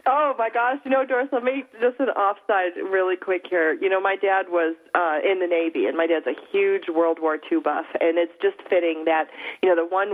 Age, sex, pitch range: 40-59, female, 165-215 Hz